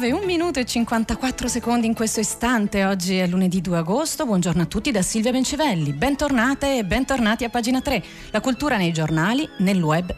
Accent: native